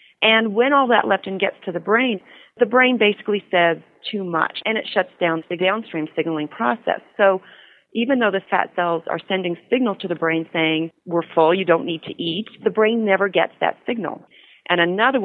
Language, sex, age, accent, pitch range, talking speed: English, female, 40-59, American, 165-210 Hz, 200 wpm